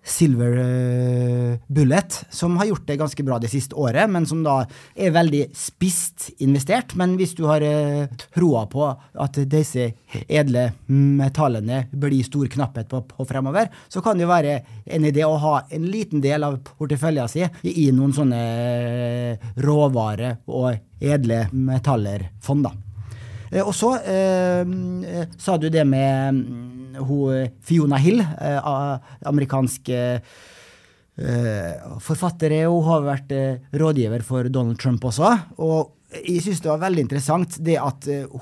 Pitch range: 125-155 Hz